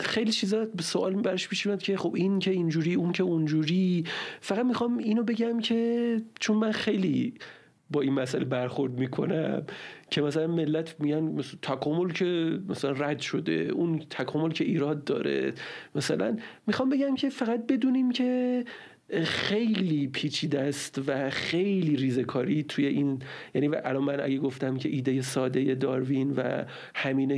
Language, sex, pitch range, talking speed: Persian, male, 135-175 Hz, 150 wpm